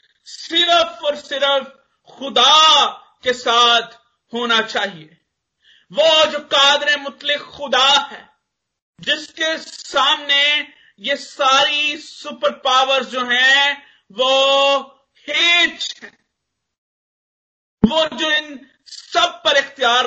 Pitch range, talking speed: 210-280 Hz, 95 wpm